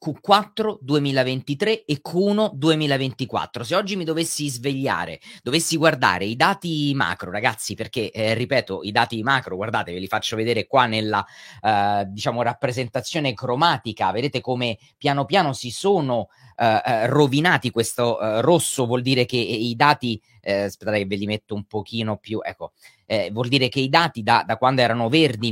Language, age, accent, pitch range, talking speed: Italian, 30-49, native, 110-145 Hz, 165 wpm